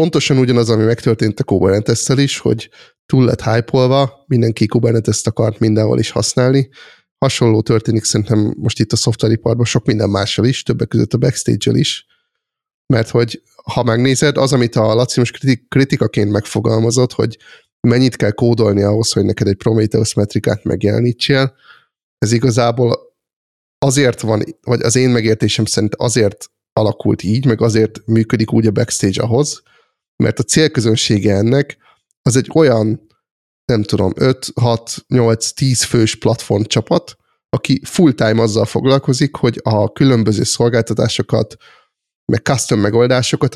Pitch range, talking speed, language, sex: 110-130 Hz, 140 wpm, Hungarian, male